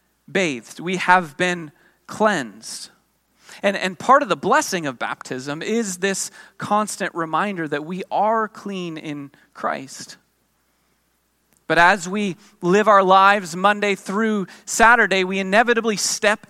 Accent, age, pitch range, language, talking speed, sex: American, 30-49, 175-215 Hz, English, 125 wpm, male